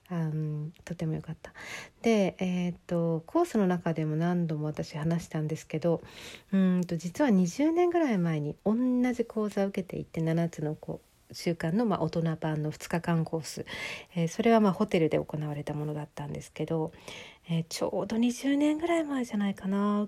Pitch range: 155-210 Hz